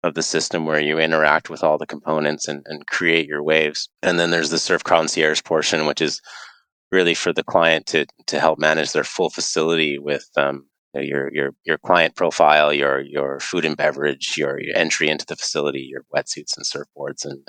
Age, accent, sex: 30-49, American, male